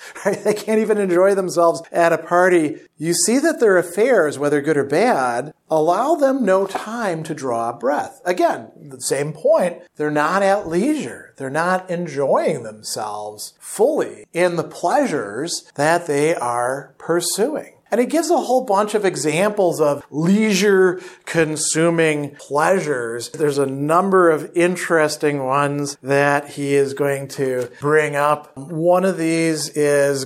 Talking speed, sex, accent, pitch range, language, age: 145 wpm, male, American, 140-185 Hz, English, 40-59